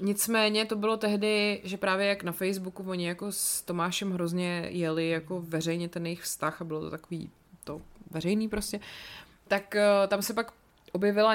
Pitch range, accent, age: 165-195 Hz, native, 20-39